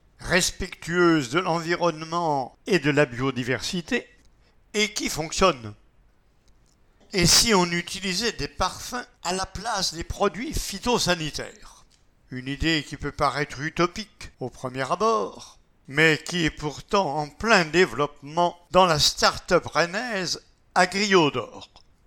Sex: male